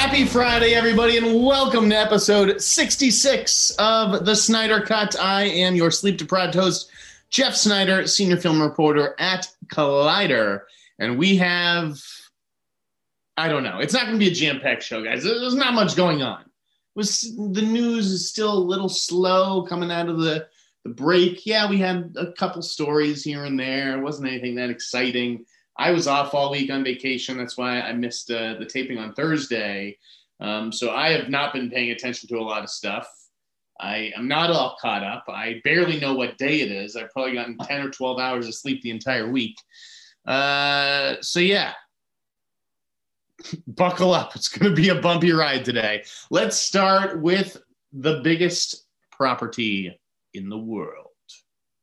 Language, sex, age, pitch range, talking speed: English, male, 30-49, 130-200 Hz, 170 wpm